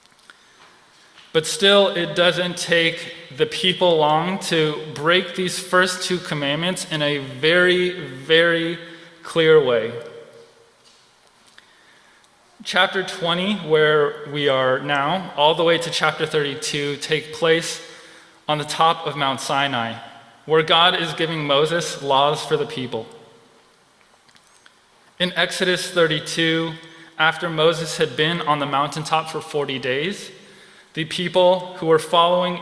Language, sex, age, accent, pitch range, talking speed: English, male, 20-39, American, 150-175 Hz, 125 wpm